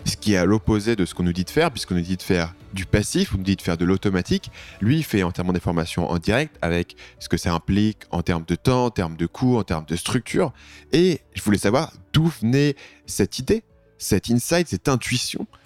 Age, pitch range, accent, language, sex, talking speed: 20-39, 90-120 Hz, French, French, male, 245 wpm